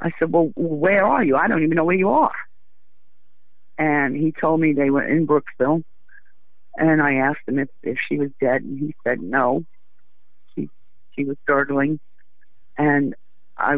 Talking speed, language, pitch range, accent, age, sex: 175 wpm, English, 135-155 Hz, American, 50-69, female